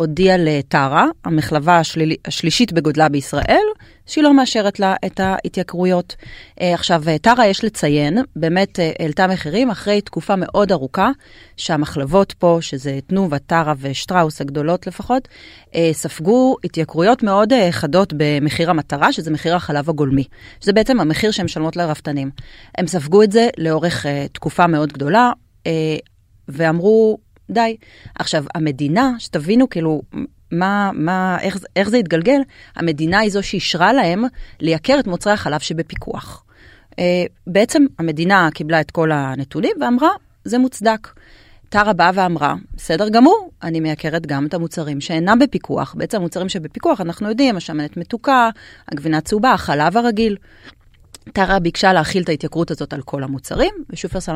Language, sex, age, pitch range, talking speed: Hebrew, female, 30-49, 155-205 Hz, 130 wpm